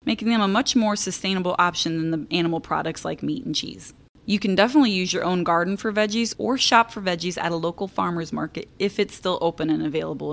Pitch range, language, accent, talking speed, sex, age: 170-210 Hz, English, American, 225 wpm, female, 20-39